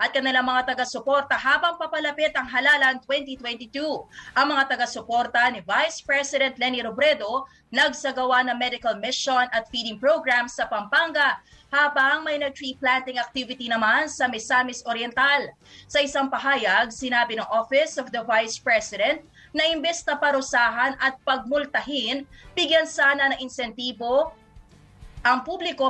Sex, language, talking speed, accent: female, English, 130 wpm, Filipino